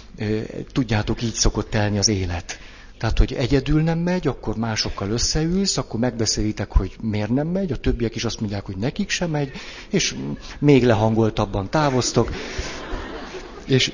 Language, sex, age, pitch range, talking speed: Hungarian, male, 60-79, 105-130 Hz, 145 wpm